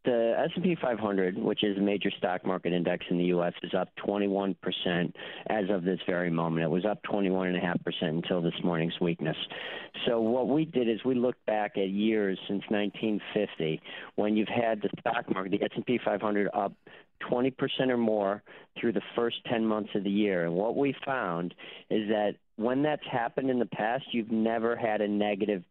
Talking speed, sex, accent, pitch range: 185 wpm, male, American, 100-120 Hz